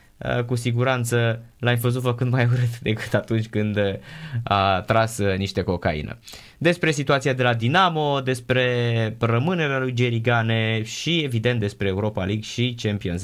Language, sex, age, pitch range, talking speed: Romanian, male, 20-39, 100-130 Hz, 140 wpm